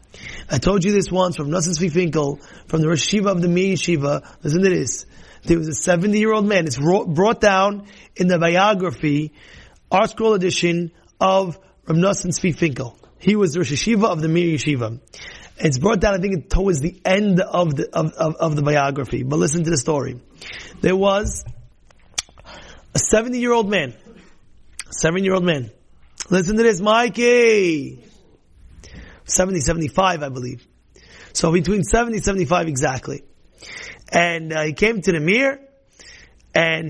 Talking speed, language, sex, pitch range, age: 165 wpm, English, male, 155-205 Hz, 30-49